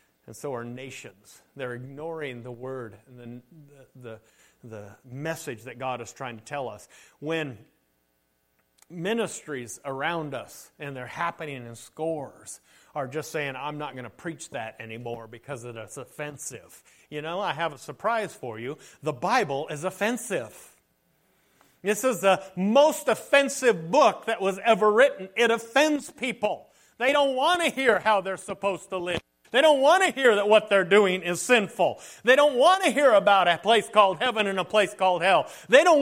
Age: 40-59